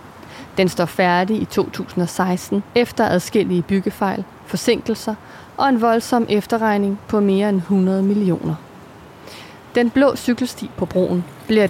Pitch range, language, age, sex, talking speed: 175-215 Hz, Danish, 30-49, female, 125 wpm